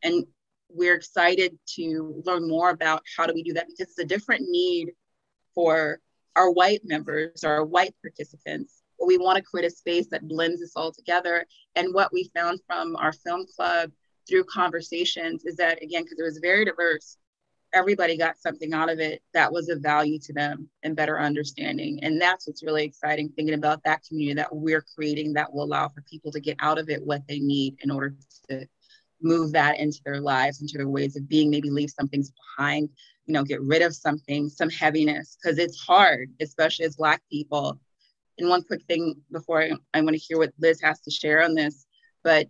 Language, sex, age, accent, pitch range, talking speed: English, female, 30-49, American, 150-175 Hz, 205 wpm